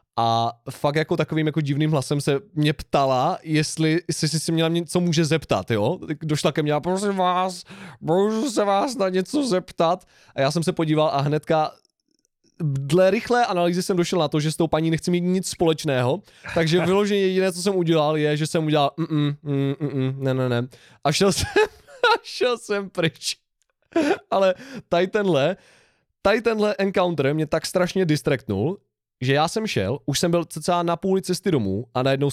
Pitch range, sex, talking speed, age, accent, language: 145-180 Hz, male, 180 wpm, 20-39, native, Czech